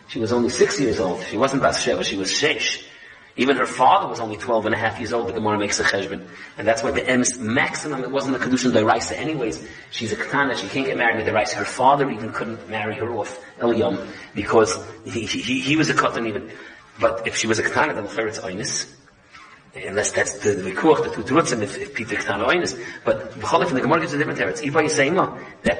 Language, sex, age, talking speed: English, male, 30-49, 240 wpm